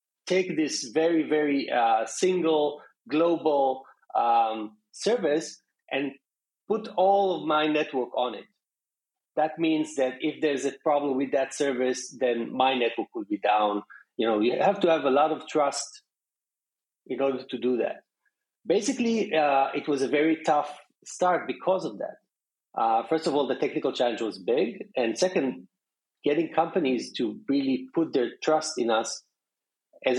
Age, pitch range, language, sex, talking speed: 40-59, 130-170 Hz, English, male, 160 wpm